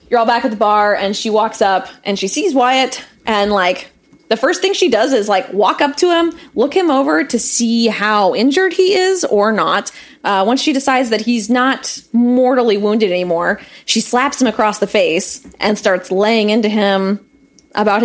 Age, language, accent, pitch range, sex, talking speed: 20-39, English, American, 200-300 Hz, female, 200 wpm